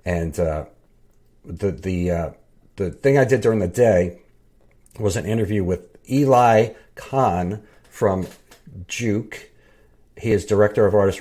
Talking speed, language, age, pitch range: 135 wpm, English, 50-69, 95-120 Hz